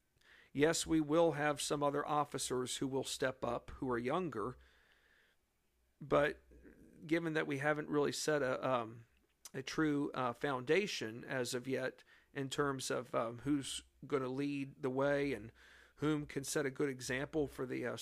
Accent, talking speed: American, 165 wpm